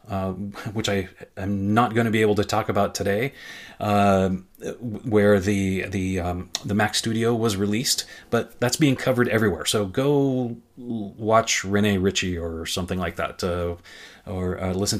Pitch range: 95-115 Hz